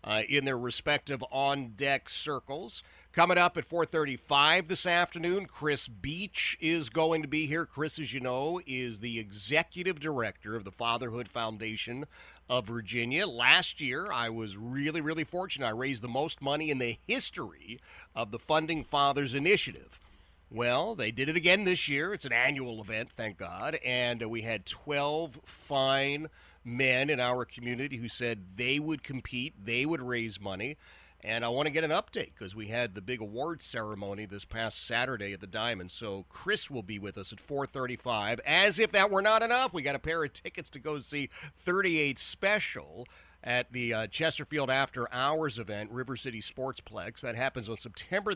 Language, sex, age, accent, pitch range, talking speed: English, male, 40-59, American, 115-155 Hz, 180 wpm